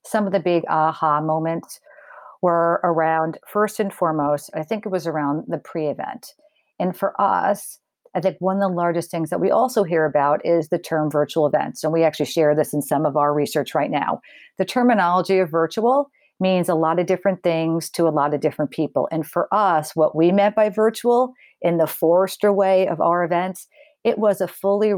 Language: English